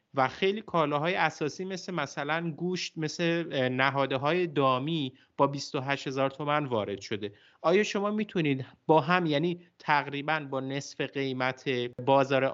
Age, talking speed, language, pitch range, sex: 30-49, 135 wpm, Persian, 130-170 Hz, male